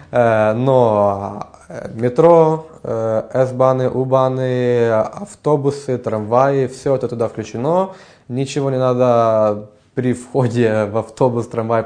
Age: 20-39